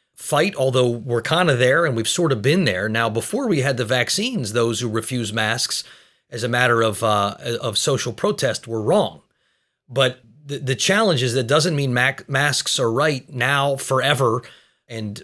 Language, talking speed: English, 185 wpm